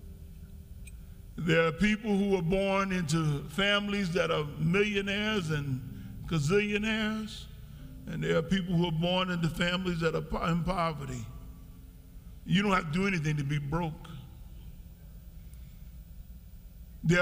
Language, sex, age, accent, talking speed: English, male, 50-69, American, 125 wpm